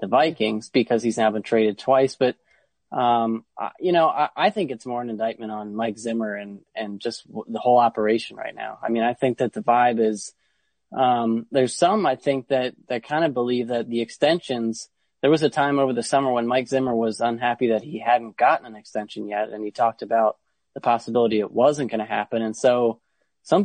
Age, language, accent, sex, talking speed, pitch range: 20-39, English, American, male, 220 wpm, 115-135 Hz